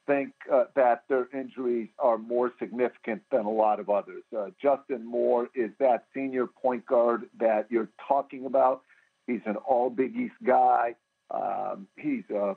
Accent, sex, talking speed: American, male, 160 wpm